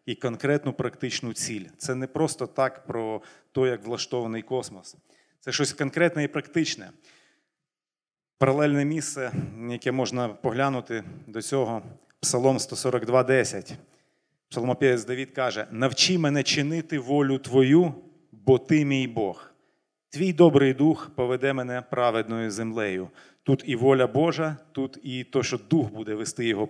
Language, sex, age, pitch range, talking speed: Ukrainian, male, 30-49, 120-150 Hz, 130 wpm